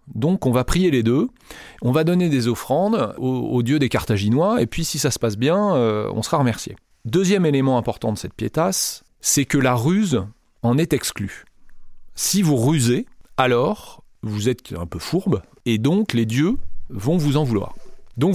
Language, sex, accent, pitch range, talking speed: French, male, French, 95-145 Hz, 190 wpm